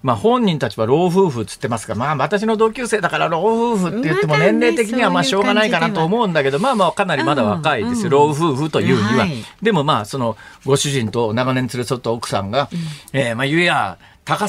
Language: Japanese